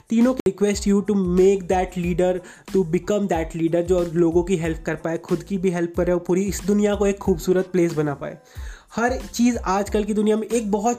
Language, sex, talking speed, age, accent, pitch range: Hindi, male, 230 wpm, 20-39, native, 180-215 Hz